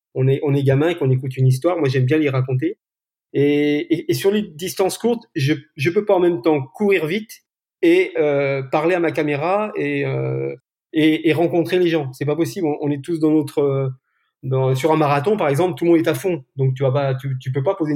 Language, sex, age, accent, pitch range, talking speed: French, male, 40-59, French, 135-185 Hz, 245 wpm